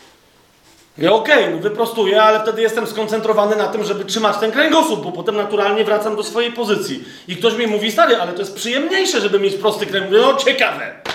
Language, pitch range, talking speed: Polish, 210-250 Hz, 195 wpm